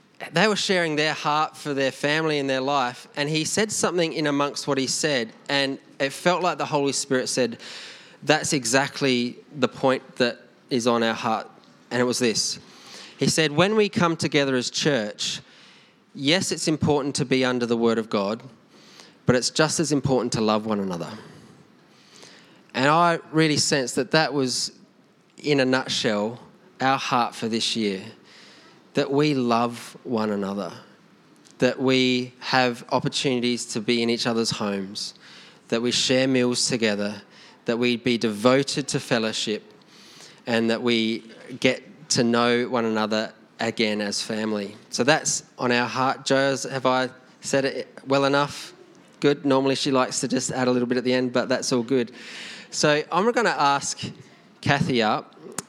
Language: English